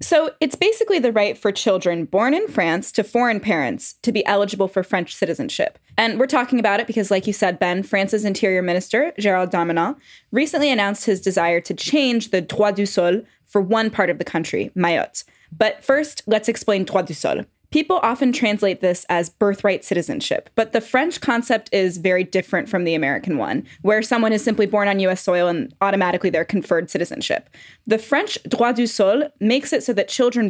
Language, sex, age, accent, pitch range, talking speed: English, female, 10-29, American, 185-245 Hz, 195 wpm